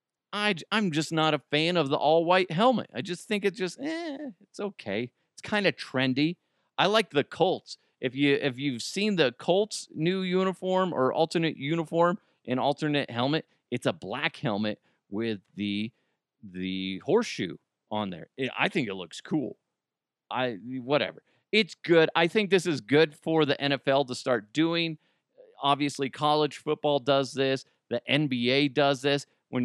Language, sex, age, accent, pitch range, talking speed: English, male, 40-59, American, 130-170 Hz, 170 wpm